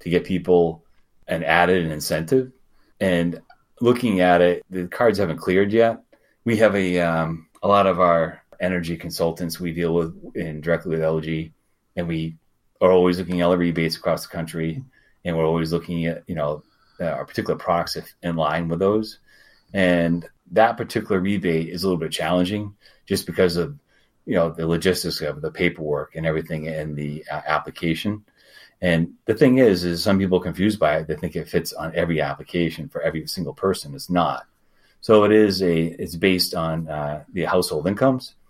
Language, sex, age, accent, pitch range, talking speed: English, male, 30-49, American, 80-95 Hz, 185 wpm